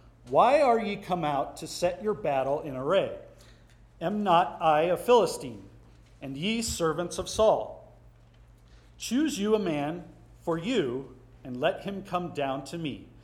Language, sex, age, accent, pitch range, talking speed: English, male, 40-59, American, 125-170 Hz, 155 wpm